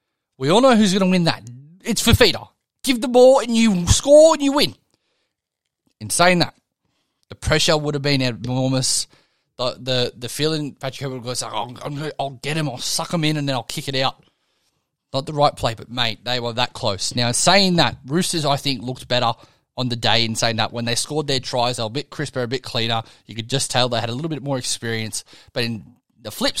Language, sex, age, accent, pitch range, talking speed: English, male, 20-39, Australian, 125-155 Hz, 235 wpm